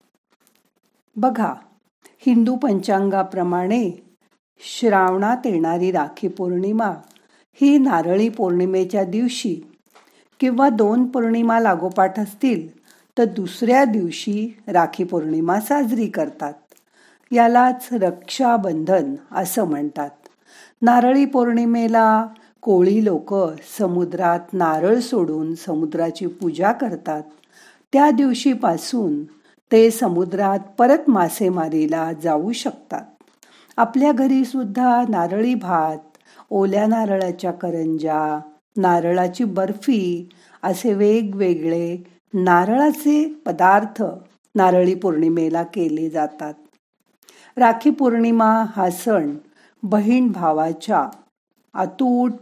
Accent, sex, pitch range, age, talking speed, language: native, female, 175-240 Hz, 50-69, 80 wpm, Marathi